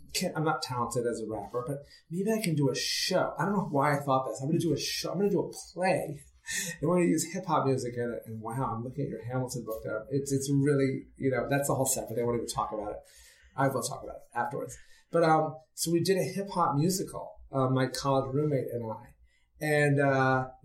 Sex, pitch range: male, 135-175 Hz